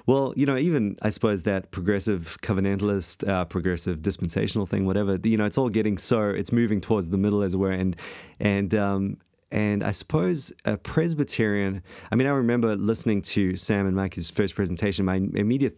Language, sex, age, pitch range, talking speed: English, male, 30-49, 95-115 Hz, 185 wpm